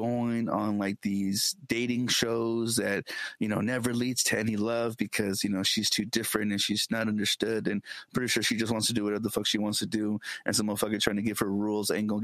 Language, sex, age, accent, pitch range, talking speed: English, male, 30-49, American, 100-115 Hz, 240 wpm